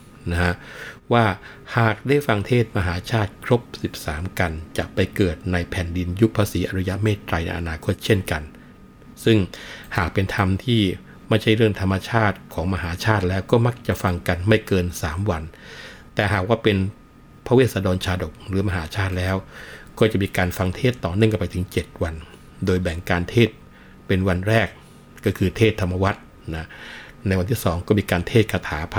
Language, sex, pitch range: Thai, male, 90-110 Hz